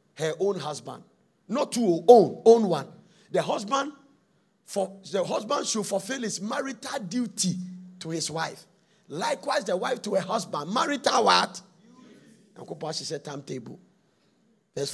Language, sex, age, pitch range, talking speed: English, male, 50-69, 145-210 Hz, 135 wpm